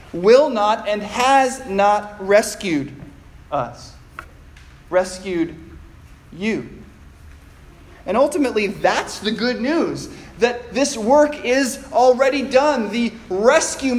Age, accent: 20-39, American